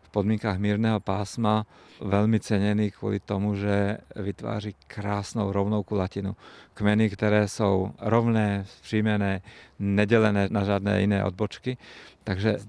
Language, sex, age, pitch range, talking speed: Czech, male, 50-69, 100-110 Hz, 120 wpm